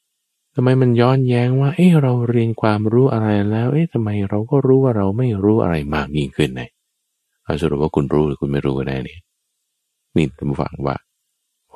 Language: Thai